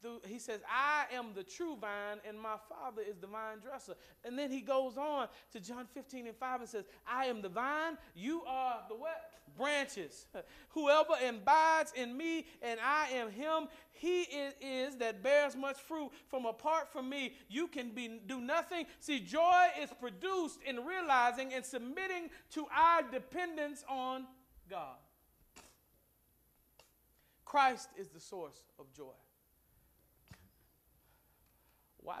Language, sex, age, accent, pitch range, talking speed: English, male, 40-59, American, 185-285 Hz, 145 wpm